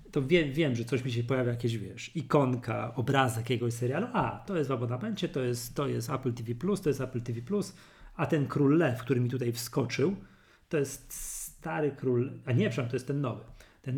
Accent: native